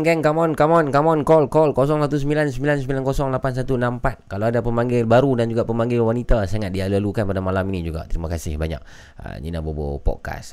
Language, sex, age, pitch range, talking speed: Malay, male, 20-39, 95-125 Hz, 180 wpm